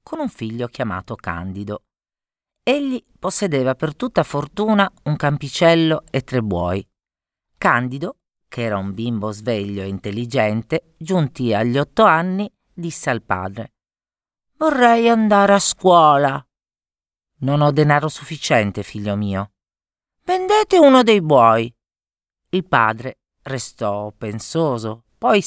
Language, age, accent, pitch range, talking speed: Italian, 40-59, native, 105-170 Hz, 115 wpm